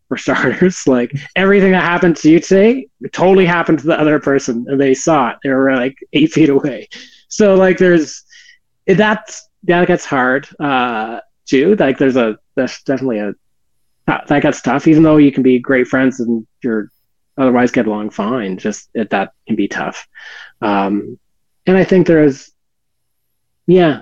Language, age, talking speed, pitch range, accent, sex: English, 30-49, 175 wpm, 125-170 Hz, American, male